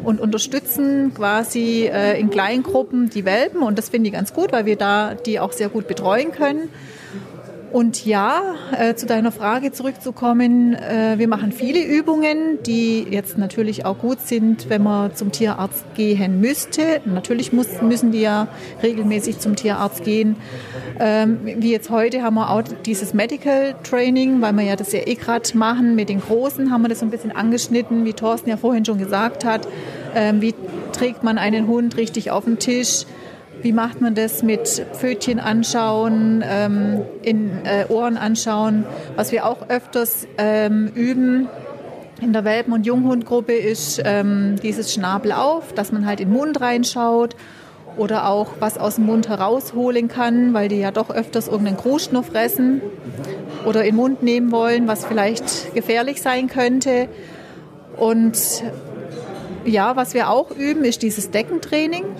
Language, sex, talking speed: German, female, 160 wpm